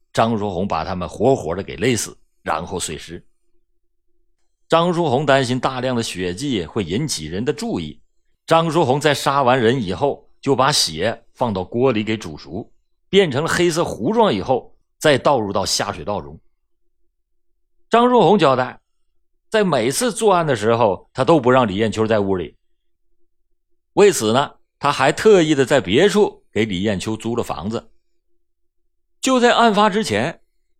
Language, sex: Chinese, male